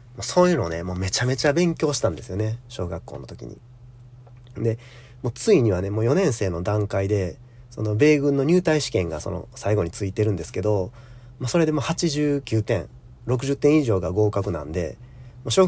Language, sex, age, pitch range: Japanese, male, 40-59, 100-125 Hz